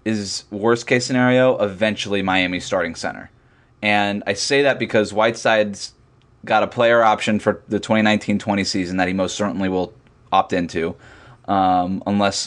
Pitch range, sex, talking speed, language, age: 100-120 Hz, male, 145 wpm, English, 20-39